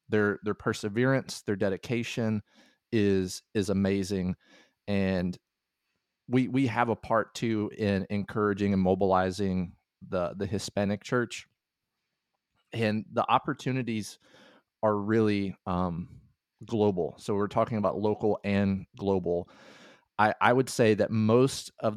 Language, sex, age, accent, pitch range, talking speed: English, male, 30-49, American, 100-115 Hz, 120 wpm